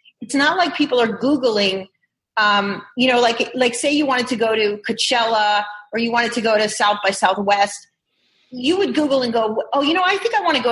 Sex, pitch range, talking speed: female, 205-255 Hz, 230 wpm